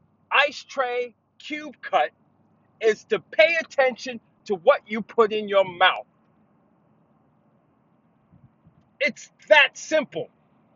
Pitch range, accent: 215-290 Hz, American